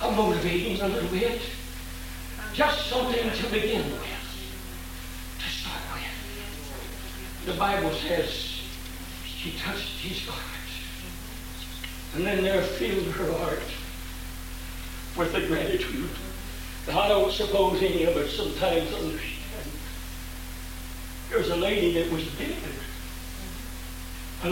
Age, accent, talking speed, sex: 60-79, American, 115 wpm, male